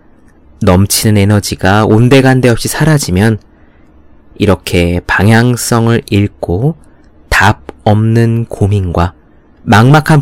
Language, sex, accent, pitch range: Korean, male, native, 85-120 Hz